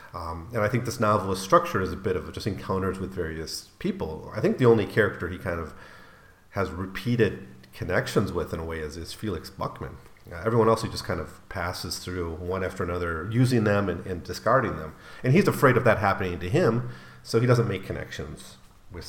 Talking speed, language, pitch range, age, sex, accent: 210 wpm, English, 90-110 Hz, 40-59, male, American